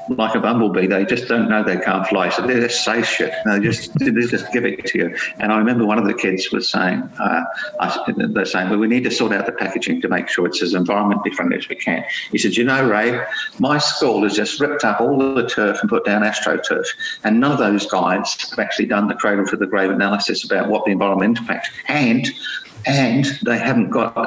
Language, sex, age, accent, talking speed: English, male, 50-69, British, 250 wpm